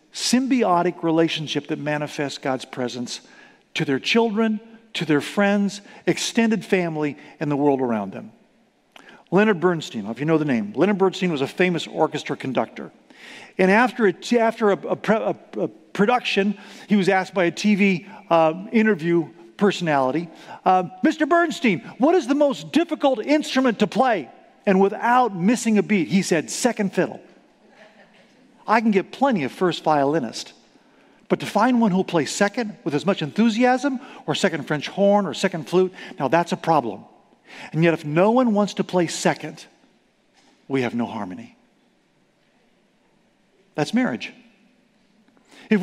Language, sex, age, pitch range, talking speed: English, male, 50-69, 170-235 Hz, 150 wpm